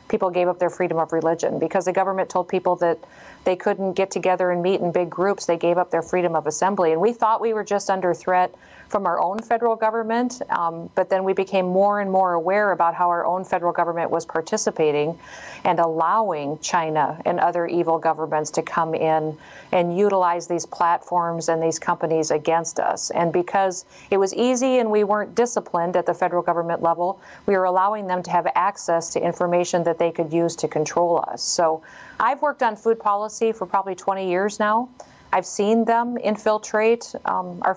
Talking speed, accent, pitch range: 200 wpm, American, 170-205 Hz